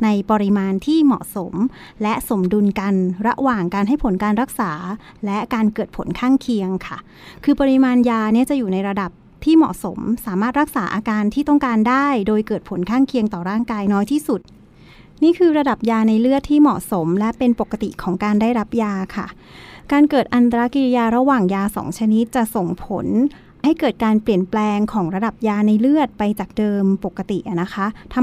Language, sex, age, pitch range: Thai, female, 30-49, 200-260 Hz